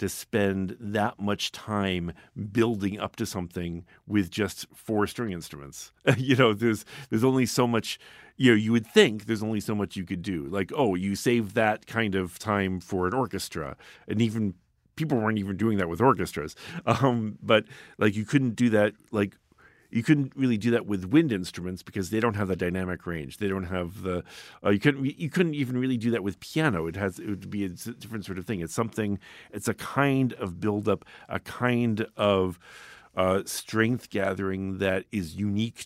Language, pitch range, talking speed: English, 95-115 Hz, 195 wpm